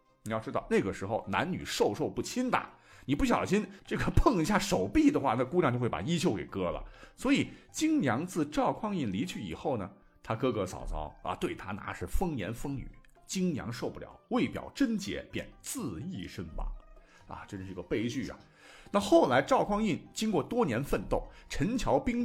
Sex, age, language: male, 50-69, Chinese